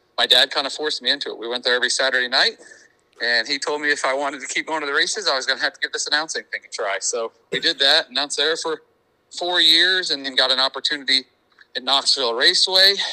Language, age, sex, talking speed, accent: English, 40-59, male, 255 wpm, American